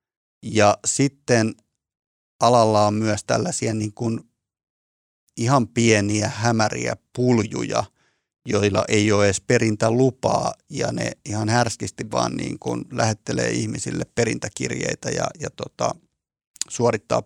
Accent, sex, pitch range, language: native, male, 105-120 Hz, Finnish